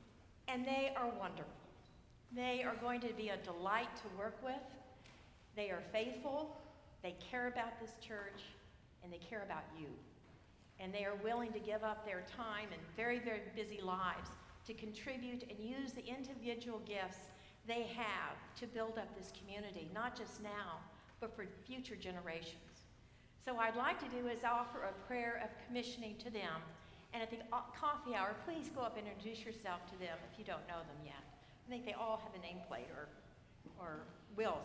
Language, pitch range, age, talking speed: English, 200-245 Hz, 50-69, 180 wpm